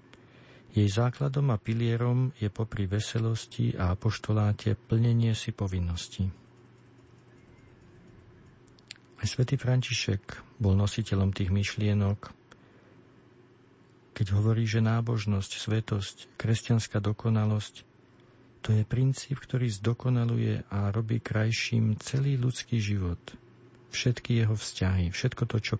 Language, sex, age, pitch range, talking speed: Slovak, male, 50-69, 105-125 Hz, 100 wpm